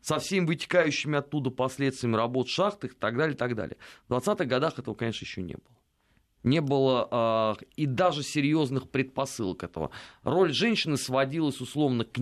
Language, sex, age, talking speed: Russian, male, 30-49, 165 wpm